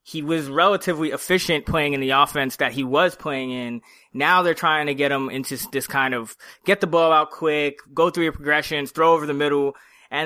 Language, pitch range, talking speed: English, 140-175 Hz, 215 wpm